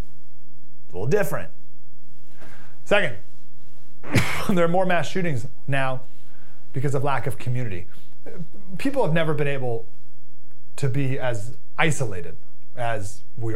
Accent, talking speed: American, 115 wpm